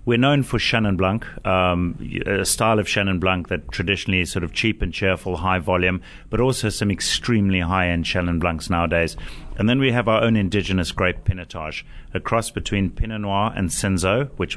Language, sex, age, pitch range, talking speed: English, male, 30-49, 90-105 Hz, 195 wpm